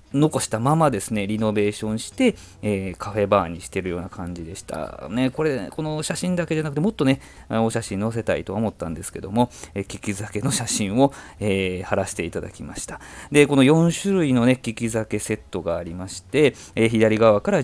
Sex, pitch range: male, 100-135 Hz